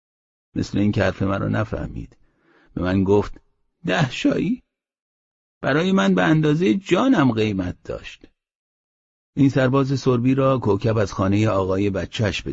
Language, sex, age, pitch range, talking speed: Persian, male, 50-69, 90-120 Hz, 130 wpm